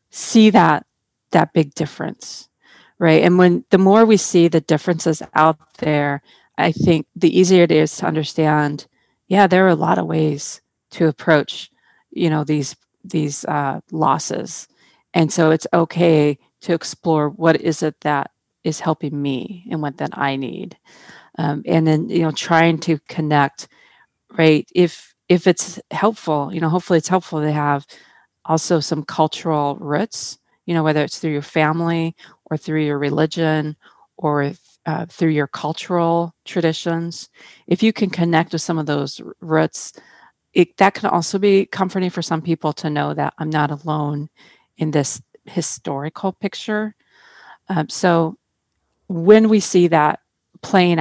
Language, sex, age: English, female, 40-59